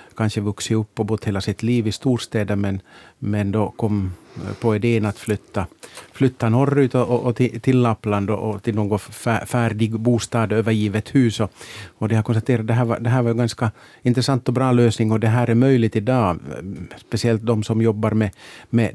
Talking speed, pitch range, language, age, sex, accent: 195 wpm, 105-120 Hz, Swedish, 50-69, male, Finnish